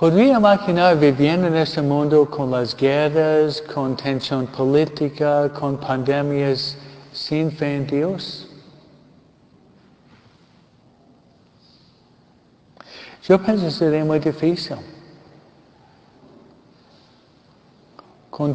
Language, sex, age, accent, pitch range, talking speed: Spanish, male, 60-79, American, 140-170 Hz, 80 wpm